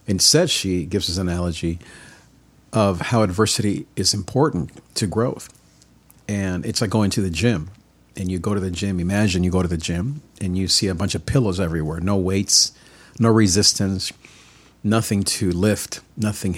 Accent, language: American, English